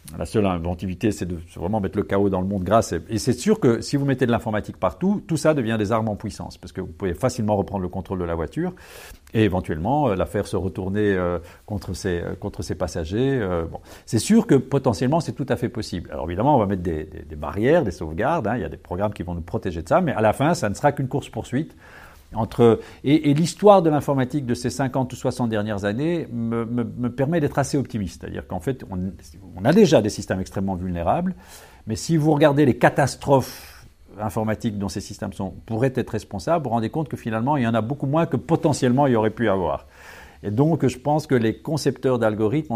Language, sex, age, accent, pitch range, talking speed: French, male, 50-69, French, 95-135 Hz, 240 wpm